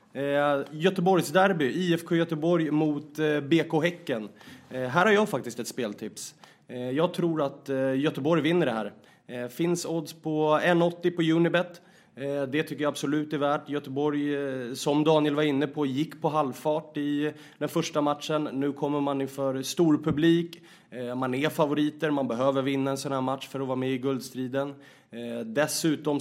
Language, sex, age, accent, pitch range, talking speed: English, male, 30-49, Swedish, 130-160 Hz, 155 wpm